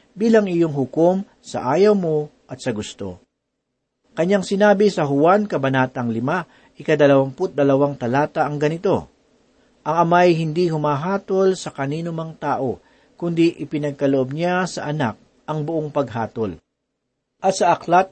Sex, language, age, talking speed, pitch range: male, Filipino, 50-69, 125 wpm, 135-195 Hz